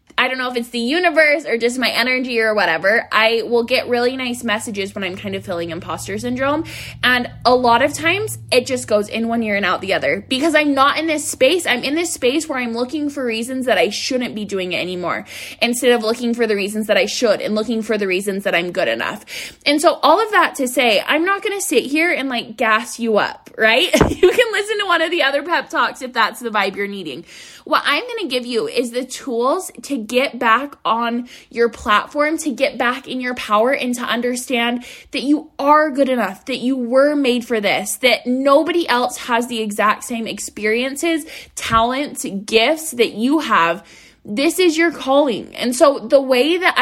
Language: English